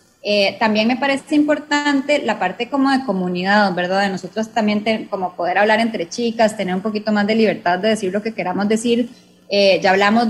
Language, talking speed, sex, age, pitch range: English, 205 wpm, female, 20-39, 195-245 Hz